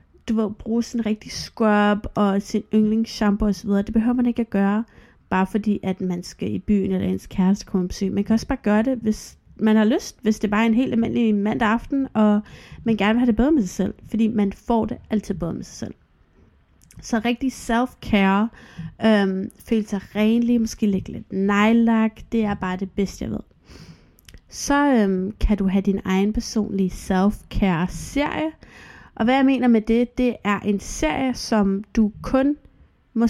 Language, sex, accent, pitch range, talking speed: Danish, female, native, 195-230 Hz, 195 wpm